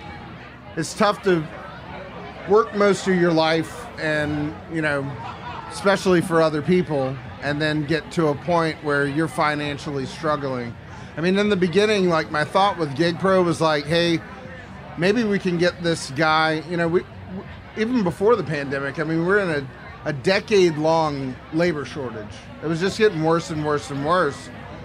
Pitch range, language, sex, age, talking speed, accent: 150-180 Hz, English, male, 40-59, 165 wpm, American